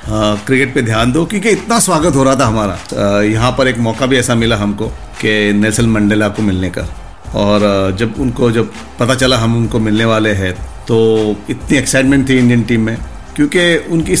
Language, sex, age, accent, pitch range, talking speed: Hindi, male, 50-69, native, 105-140 Hz, 205 wpm